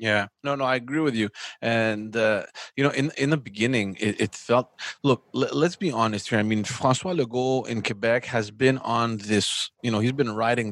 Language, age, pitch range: English, 30-49, 105-125 Hz